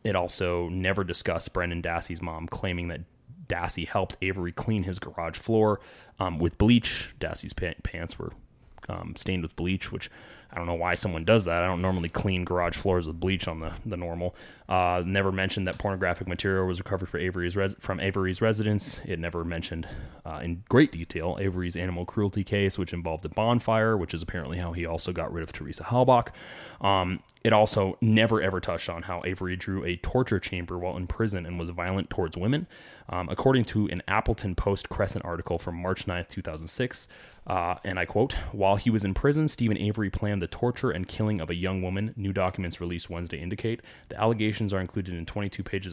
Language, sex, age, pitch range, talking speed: English, male, 20-39, 85-100 Hz, 195 wpm